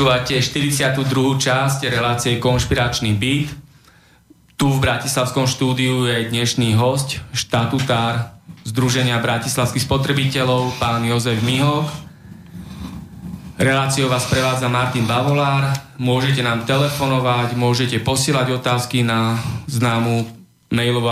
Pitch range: 115-135 Hz